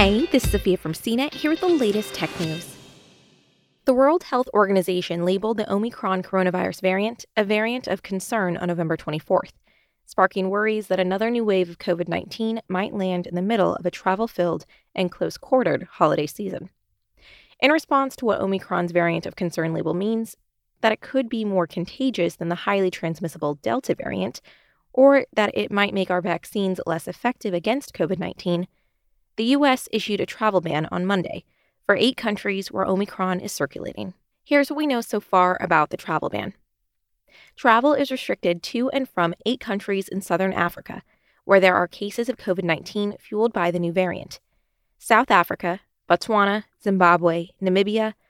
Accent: American